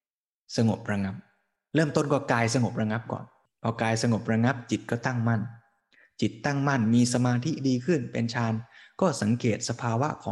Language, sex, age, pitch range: Thai, male, 20-39, 110-130 Hz